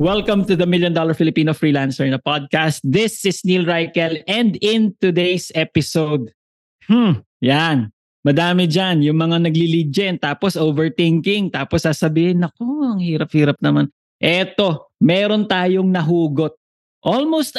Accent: Filipino